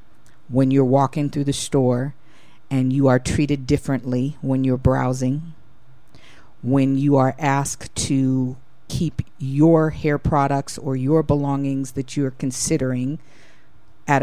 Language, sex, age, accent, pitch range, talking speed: English, female, 50-69, American, 130-140 Hz, 125 wpm